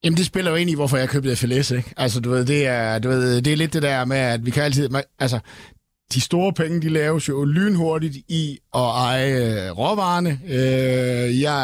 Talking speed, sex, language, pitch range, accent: 210 wpm, male, Danish, 120-150 Hz, native